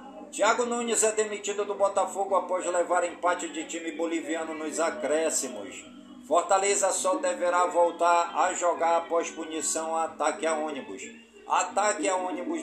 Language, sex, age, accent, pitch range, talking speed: Portuguese, male, 50-69, Brazilian, 155-205 Hz, 140 wpm